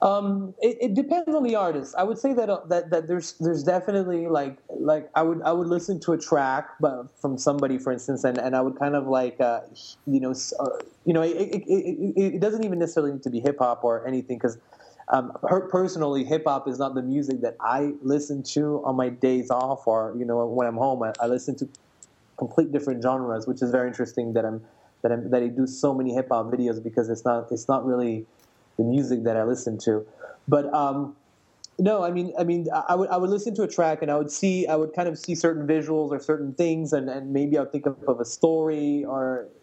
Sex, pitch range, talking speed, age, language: male, 125-155 Hz, 235 wpm, 20-39, English